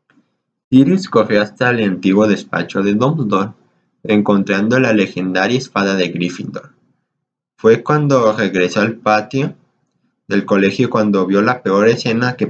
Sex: male